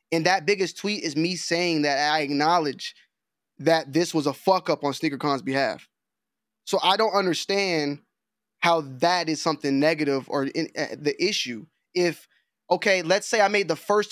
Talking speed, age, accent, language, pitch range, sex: 175 wpm, 10-29, American, English, 150-190 Hz, male